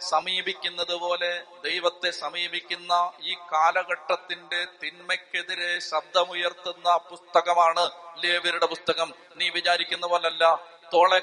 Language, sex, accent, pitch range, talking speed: Malayalam, male, native, 175-220 Hz, 75 wpm